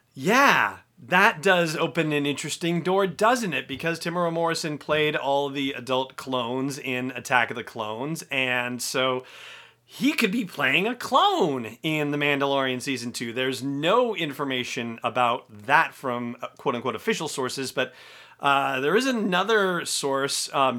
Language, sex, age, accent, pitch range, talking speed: English, male, 30-49, American, 125-165 Hz, 145 wpm